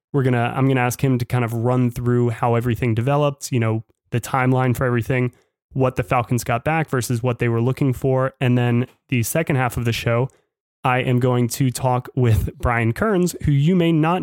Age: 20-39